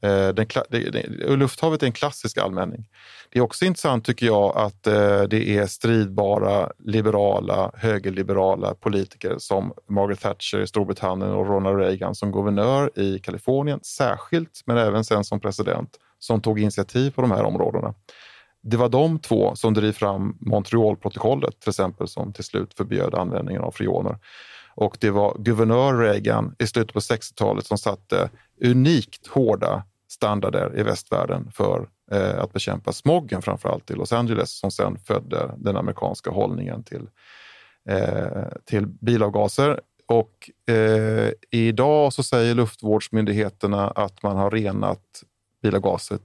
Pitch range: 100-120 Hz